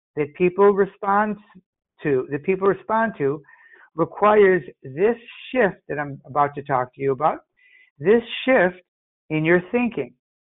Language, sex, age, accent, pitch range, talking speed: English, male, 60-79, American, 155-210 Hz, 135 wpm